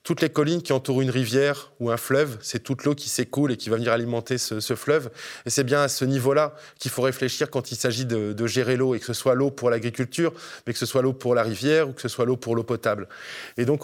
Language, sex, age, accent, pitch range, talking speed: French, male, 20-39, French, 120-140 Hz, 275 wpm